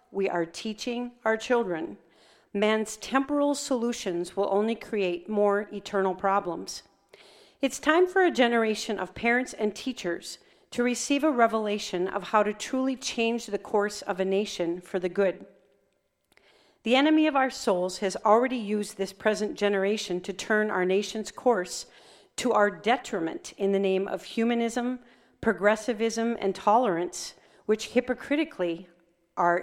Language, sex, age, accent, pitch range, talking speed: English, female, 40-59, American, 190-235 Hz, 140 wpm